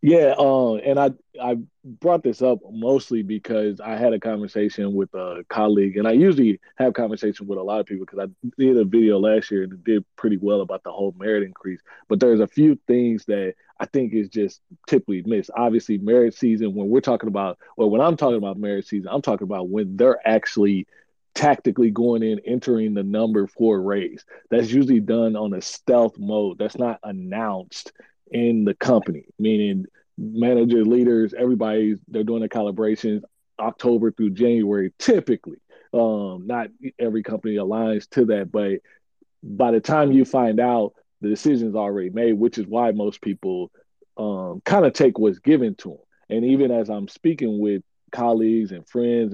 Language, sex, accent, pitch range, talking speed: English, male, American, 105-120 Hz, 180 wpm